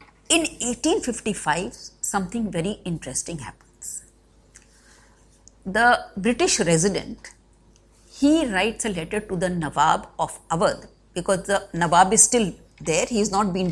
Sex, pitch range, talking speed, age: female, 160-220 Hz, 125 wpm, 50-69